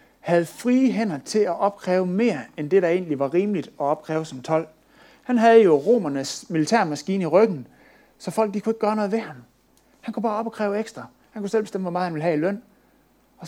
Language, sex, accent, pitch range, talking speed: Danish, male, native, 150-210 Hz, 225 wpm